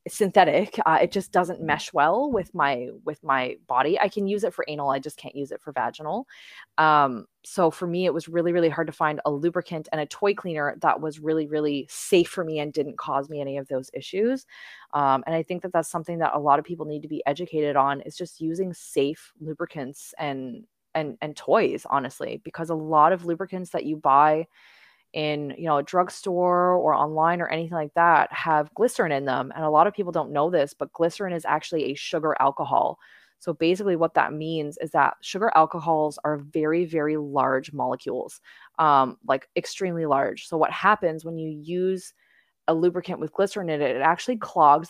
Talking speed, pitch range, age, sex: 205 wpm, 150-180 Hz, 20-39, female